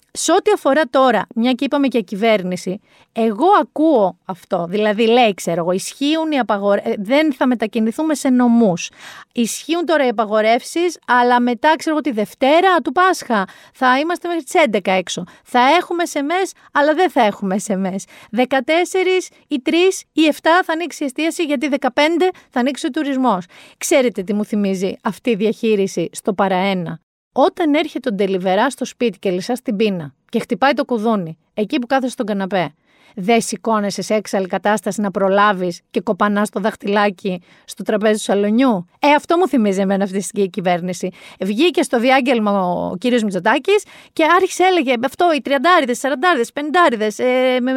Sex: female